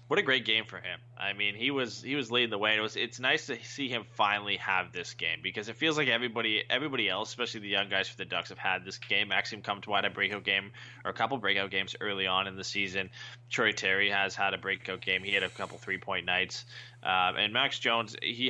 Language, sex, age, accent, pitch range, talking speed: English, male, 20-39, American, 100-120 Hz, 255 wpm